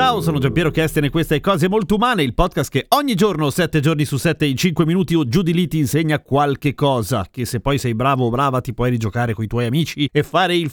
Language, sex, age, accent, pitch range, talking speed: Italian, male, 30-49, native, 140-190 Hz, 255 wpm